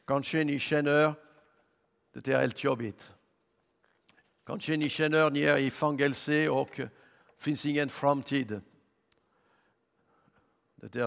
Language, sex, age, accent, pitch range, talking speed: Swedish, male, 60-79, French, 120-165 Hz, 55 wpm